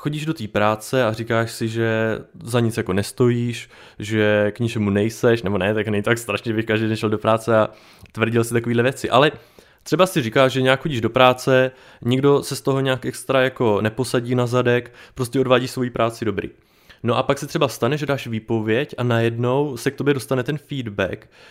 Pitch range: 115-130 Hz